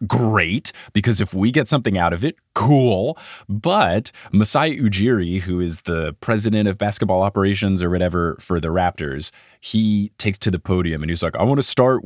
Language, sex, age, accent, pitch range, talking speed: English, male, 30-49, American, 95-125 Hz, 185 wpm